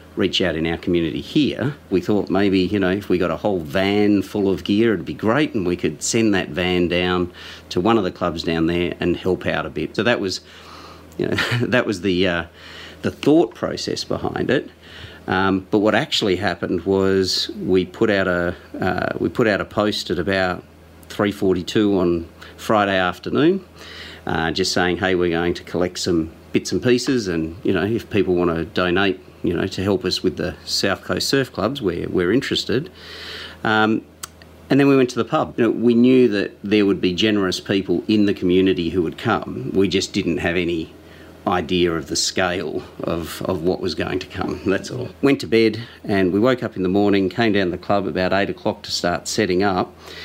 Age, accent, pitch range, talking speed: 40-59, Australian, 90-100 Hz, 205 wpm